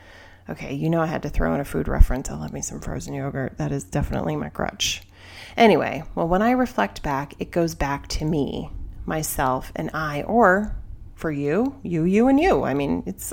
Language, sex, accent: English, female, American